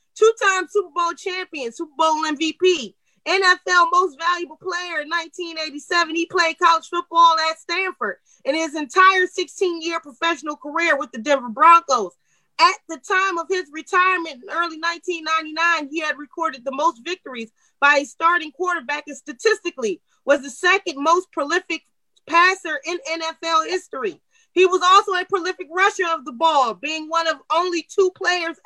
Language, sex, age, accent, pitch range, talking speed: English, female, 30-49, American, 275-355 Hz, 155 wpm